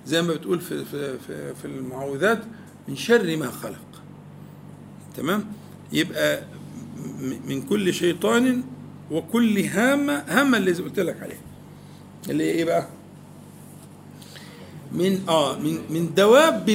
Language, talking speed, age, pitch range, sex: Arabic, 110 wpm, 50-69, 160-195 Hz, male